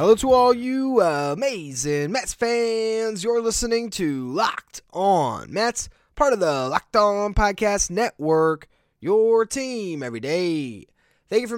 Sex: male